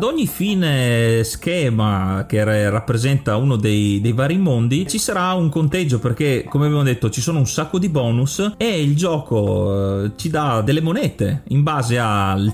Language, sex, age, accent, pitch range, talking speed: Italian, male, 30-49, native, 120-170 Hz, 165 wpm